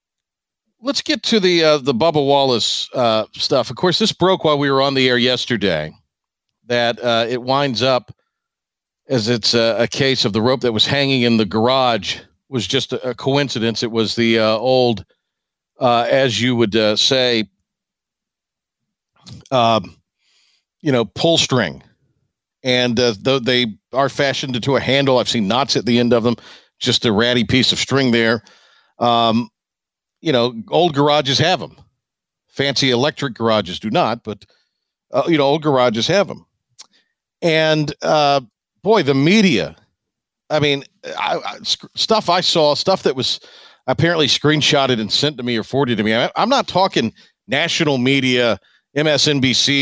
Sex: male